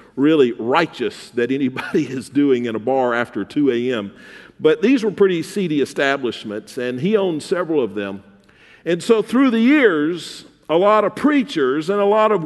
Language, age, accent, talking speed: English, 50-69, American, 180 wpm